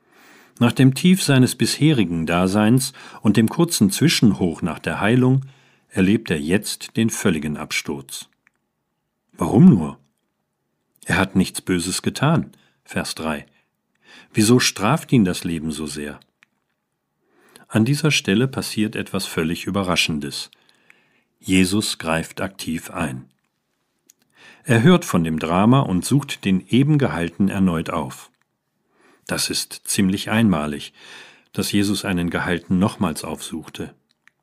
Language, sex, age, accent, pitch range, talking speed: German, male, 40-59, German, 85-125 Hz, 120 wpm